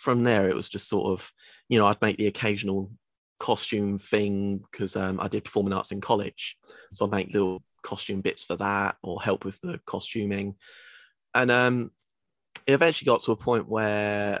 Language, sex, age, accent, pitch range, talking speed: English, male, 30-49, British, 100-120 Hz, 185 wpm